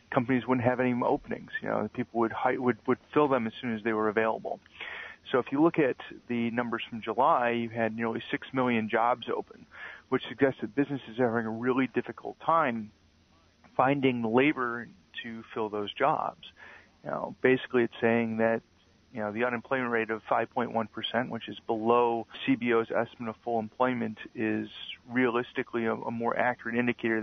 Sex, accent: male, American